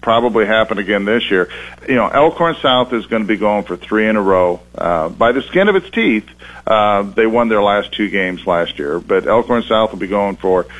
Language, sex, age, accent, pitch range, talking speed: English, male, 50-69, American, 100-120 Hz, 235 wpm